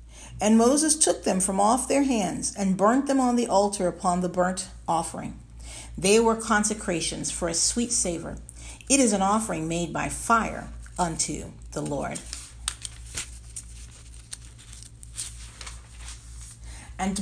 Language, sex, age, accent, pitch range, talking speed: English, female, 50-69, American, 160-210 Hz, 125 wpm